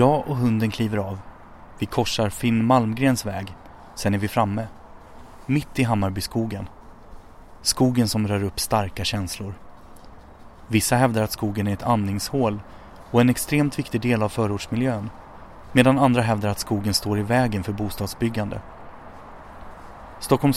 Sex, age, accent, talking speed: male, 30-49, native, 140 wpm